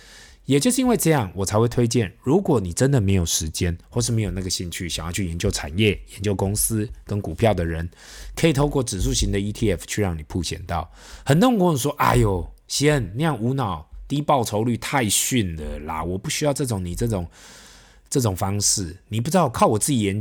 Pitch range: 85-125 Hz